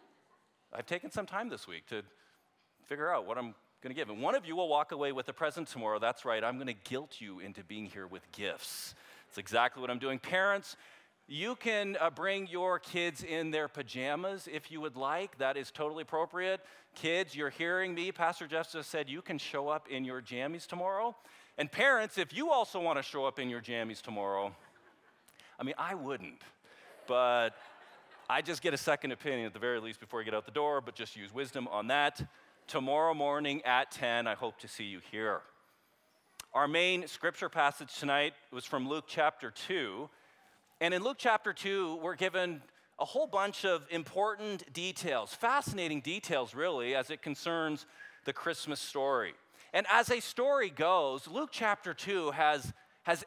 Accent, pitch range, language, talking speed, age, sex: American, 130-185 Hz, English, 190 wpm, 40-59, male